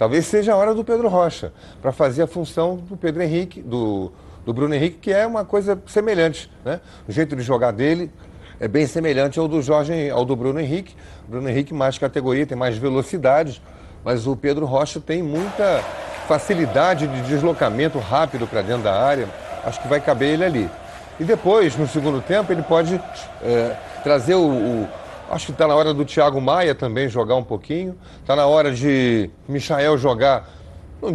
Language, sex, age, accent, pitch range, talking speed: Portuguese, male, 40-59, Brazilian, 135-170 Hz, 190 wpm